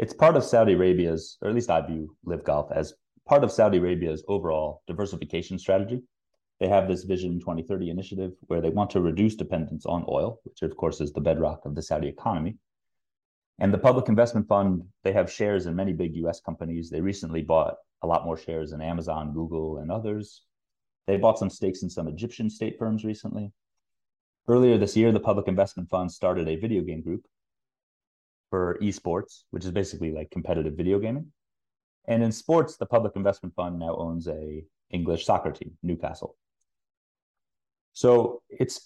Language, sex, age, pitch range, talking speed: English, male, 30-49, 85-110 Hz, 180 wpm